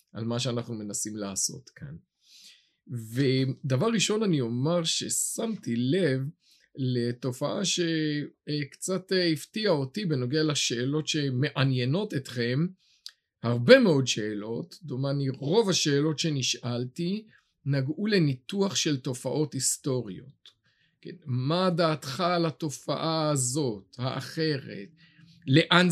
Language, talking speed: Hebrew, 90 wpm